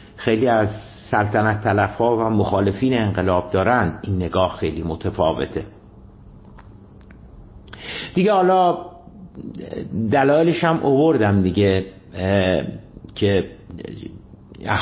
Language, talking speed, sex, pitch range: Persian, 75 wpm, male, 100-145 Hz